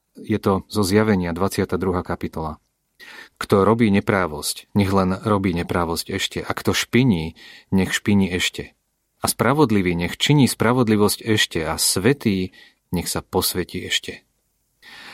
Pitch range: 85-100 Hz